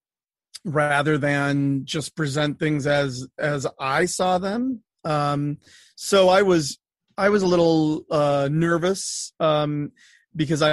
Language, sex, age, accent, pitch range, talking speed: English, male, 40-59, American, 145-170 Hz, 125 wpm